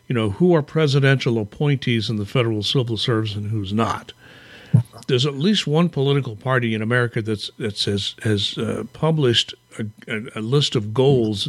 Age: 60-79